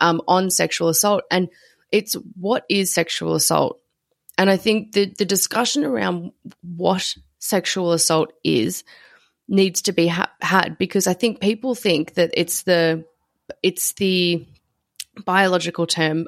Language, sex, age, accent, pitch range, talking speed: English, female, 20-39, Australian, 165-190 Hz, 140 wpm